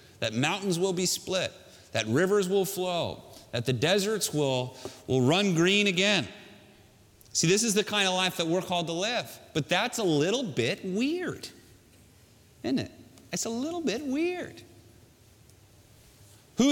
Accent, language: American, Dutch